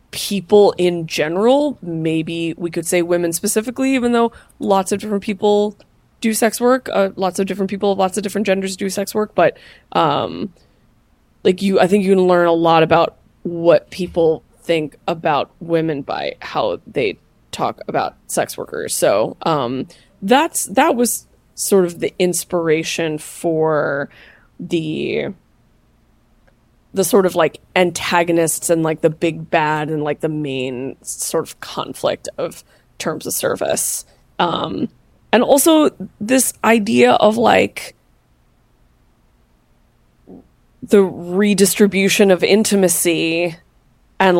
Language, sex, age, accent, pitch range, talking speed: English, female, 20-39, American, 165-200 Hz, 135 wpm